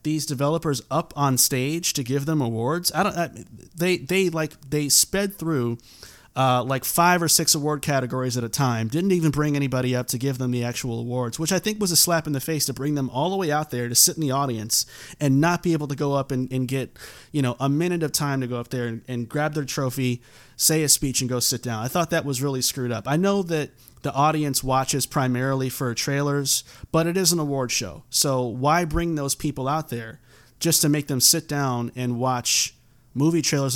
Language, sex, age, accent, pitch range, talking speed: English, male, 30-49, American, 125-160 Hz, 235 wpm